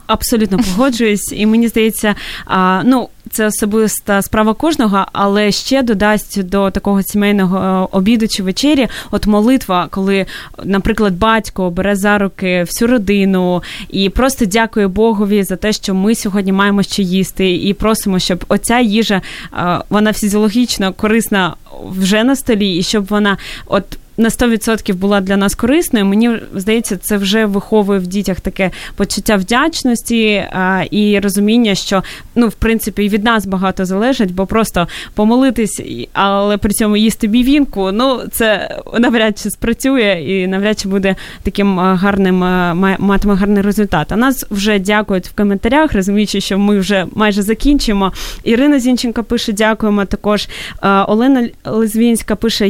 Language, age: Ukrainian, 20-39